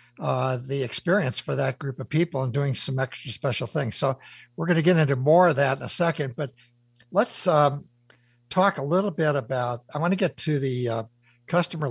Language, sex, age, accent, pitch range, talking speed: English, male, 60-79, American, 125-160 Hz, 210 wpm